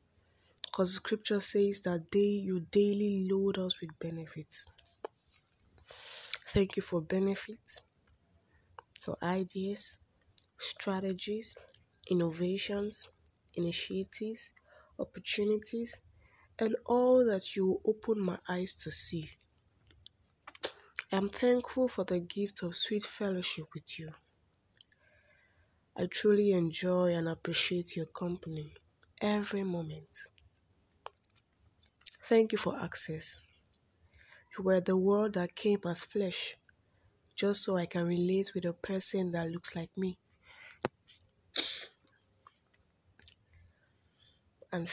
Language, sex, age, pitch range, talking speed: English, female, 20-39, 160-200 Hz, 100 wpm